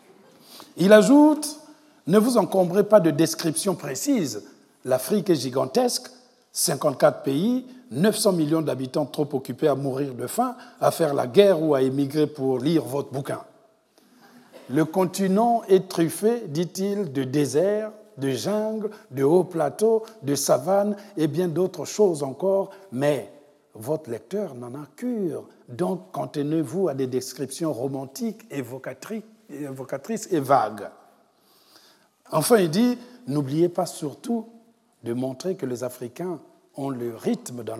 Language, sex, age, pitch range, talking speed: French, male, 60-79, 145-220 Hz, 135 wpm